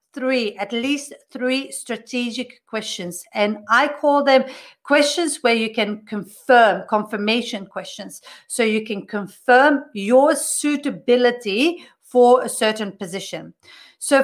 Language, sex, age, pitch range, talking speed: English, female, 40-59, 190-250 Hz, 120 wpm